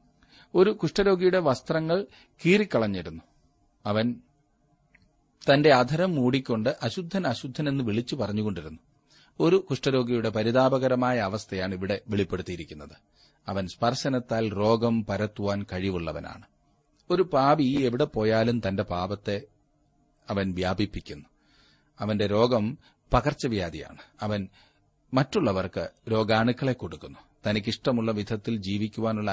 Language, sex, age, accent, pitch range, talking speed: Malayalam, male, 30-49, native, 100-135 Hz, 85 wpm